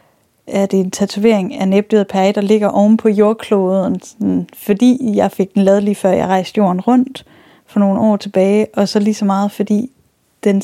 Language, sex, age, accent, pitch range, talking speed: Danish, female, 10-29, native, 195-220 Hz, 205 wpm